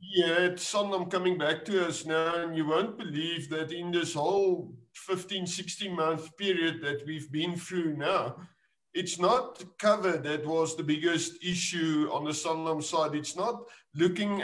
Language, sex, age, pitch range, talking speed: English, male, 50-69, 155-190 Hz, 160 wpm